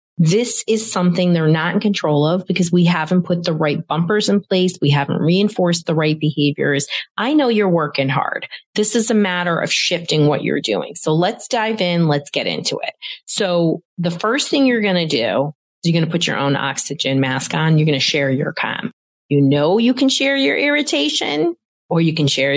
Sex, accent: female, American